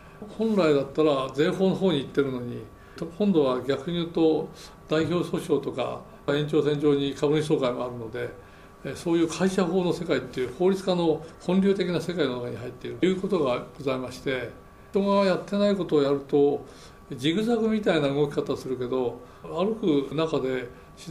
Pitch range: 135-185 Hz